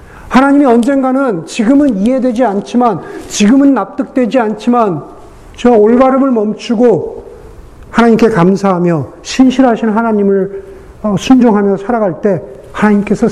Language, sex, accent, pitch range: Korean, male, native, 195-260 Hz